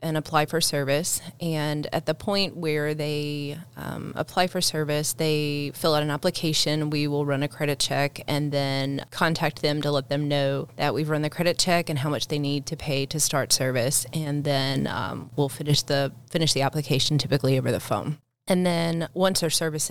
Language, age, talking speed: English, 20-39, 200 wpm